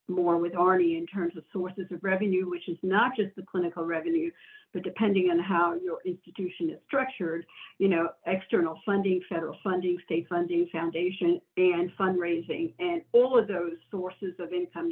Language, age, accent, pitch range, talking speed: English, 60-79, American, 175-235 Hz, 170 wpm